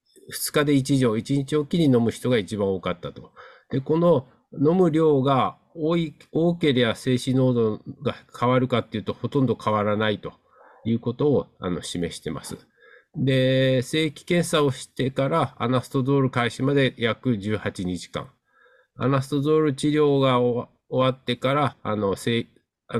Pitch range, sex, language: 110-140 Hz, male, Japanese